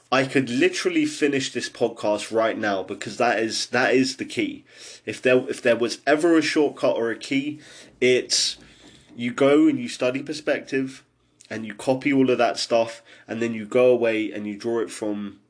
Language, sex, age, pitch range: English, male, 20-39, 105-130 Hz